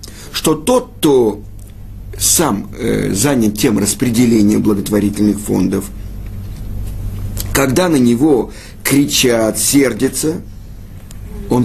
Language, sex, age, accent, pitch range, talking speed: Russian, male, 50-69, native, 100-145 Hz, 80 wpm